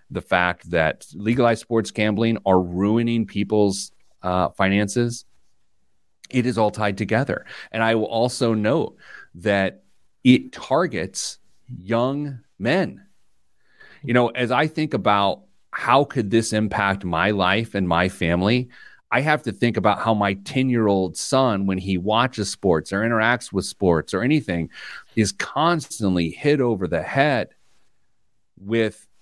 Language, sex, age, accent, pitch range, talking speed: English, male, 40-59, American, 105-160 Hz, 140 wpm